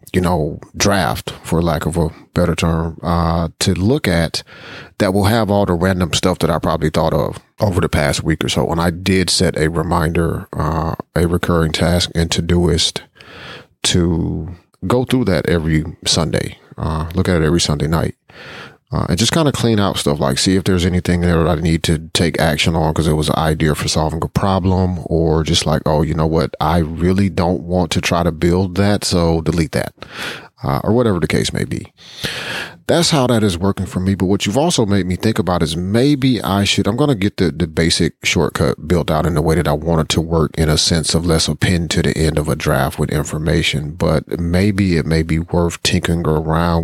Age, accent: 40-59, American